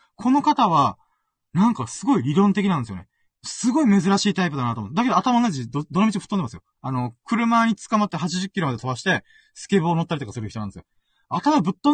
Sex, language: male, Japanese